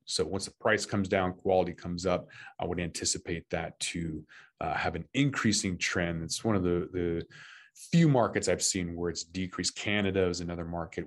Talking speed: 190 wpm